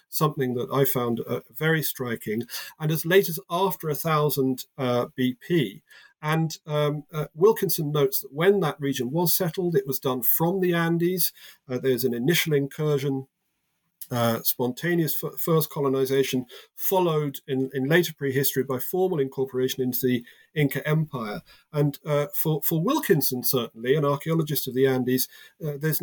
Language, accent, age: English, British, 40-59